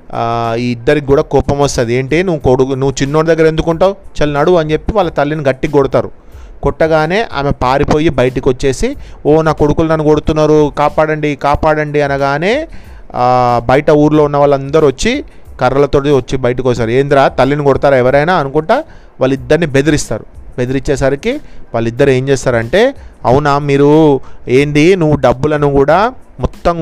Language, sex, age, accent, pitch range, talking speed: Telugu, male, 30-49, native, 130-155 Hz, 130 wpm